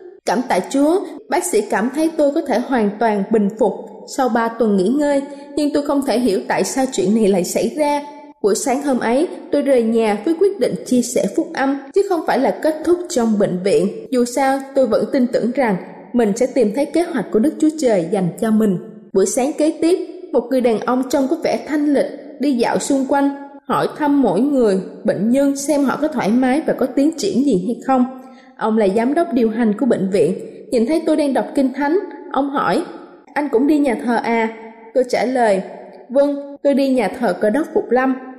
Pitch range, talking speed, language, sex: 235-300 Hz, 225 wpm, Vietnamese, female